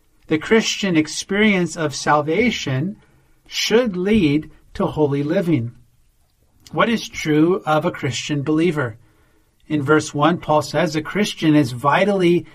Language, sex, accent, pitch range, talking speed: English, male, American, 145-185 Hz, 125 wpm